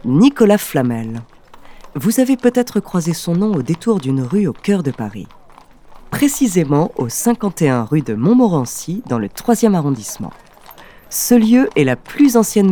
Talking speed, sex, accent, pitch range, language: 150 wpm, female, French, 140-220 Hz, French